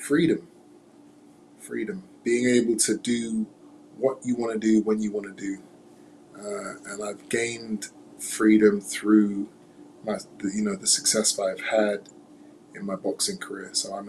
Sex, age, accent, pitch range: male, 20-39, American, 105-115 Hz